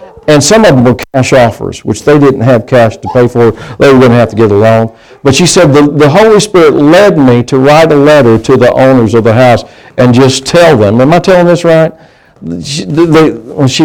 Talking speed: 230 wpm